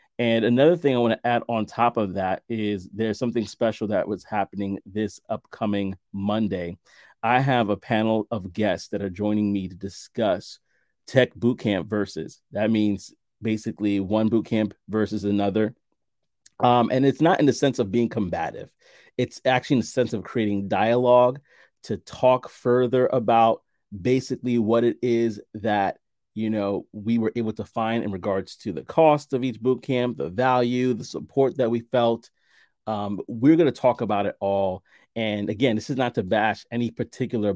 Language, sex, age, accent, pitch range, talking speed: English, male, 30-49, American, 105-125 Hz, 175 wpm